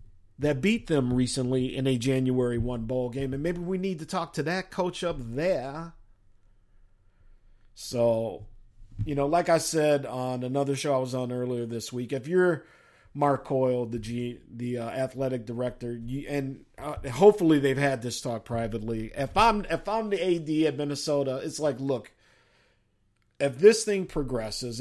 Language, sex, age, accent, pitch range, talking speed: English, male, 50-69, American, 110-155 Hz, 170 wpm